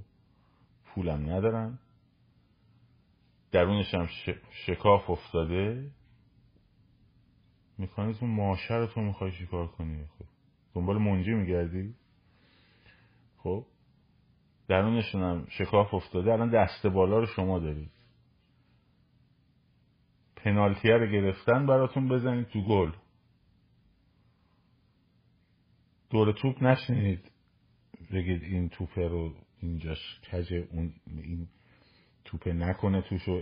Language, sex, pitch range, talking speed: Persian, male, 85-105 Hz, 95 wpm